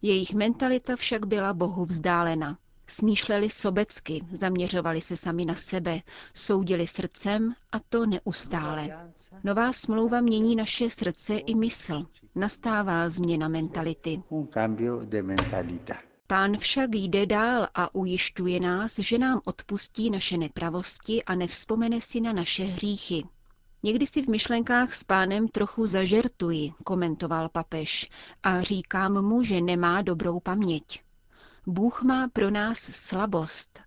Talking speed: 120 wpm